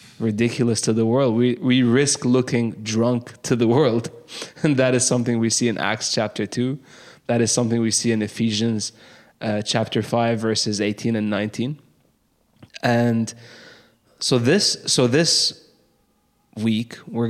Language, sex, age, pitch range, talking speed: English, male, 20-39, 110-125 Hz, 145 wpm